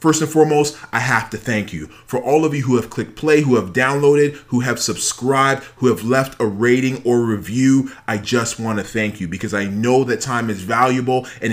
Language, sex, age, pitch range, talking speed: English, male, 30-49, 115-135 Hz, 225 wpm